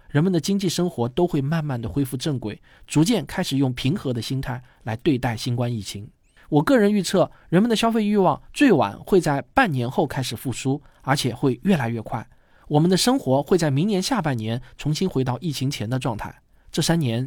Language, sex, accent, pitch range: Chinese, male, native, 120-170 Hz